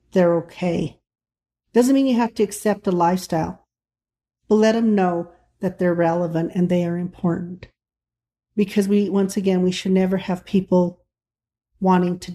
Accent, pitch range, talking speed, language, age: American, 170-200 Hz, 155 wpm, English, 40-59